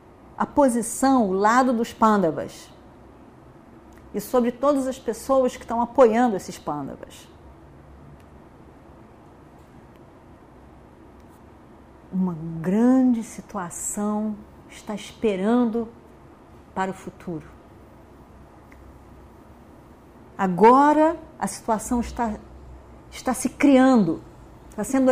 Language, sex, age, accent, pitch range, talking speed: Portuguese, female, 40-59, Brazilian, 180-240 Hz, 80 wpm